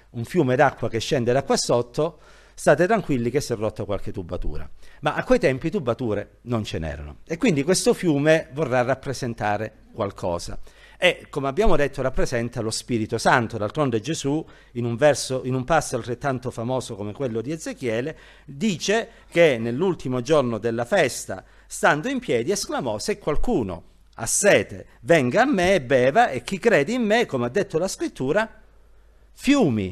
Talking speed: 165 wpm